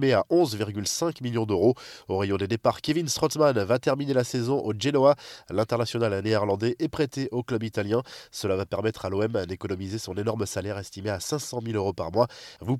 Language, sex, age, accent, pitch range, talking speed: French, male, 20-39, French, 110-145 Hz, 190 wpm